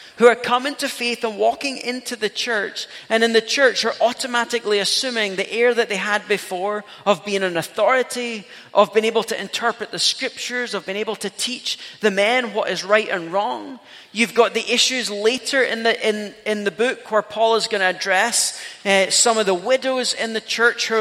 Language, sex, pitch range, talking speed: English, male, 200-240 Hz, 205 wpm